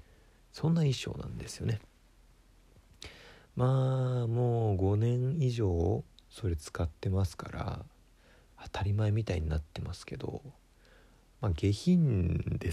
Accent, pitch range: native, 85-125 Hz